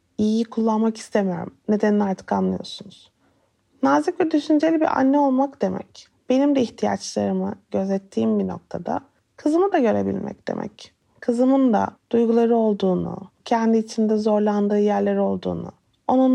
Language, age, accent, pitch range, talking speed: Turkish, 30-49, native, 210-260 Hz, 120 wpm